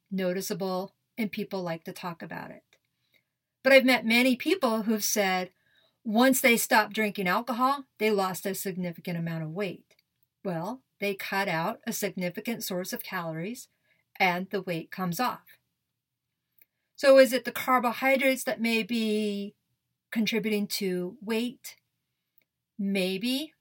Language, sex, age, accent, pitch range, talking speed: English, female, 50-69, American, 185-225 Hz, 135 wpm